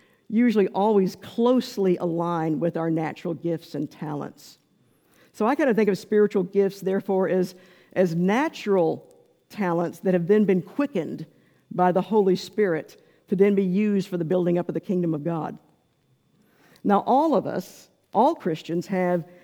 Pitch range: 175-210 Hz